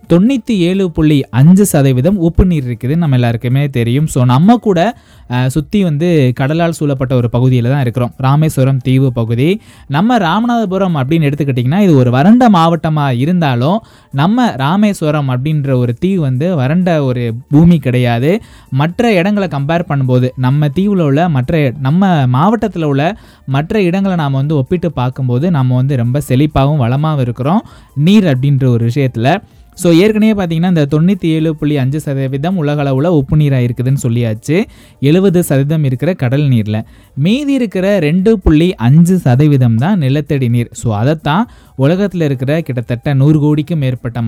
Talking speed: 140 wpm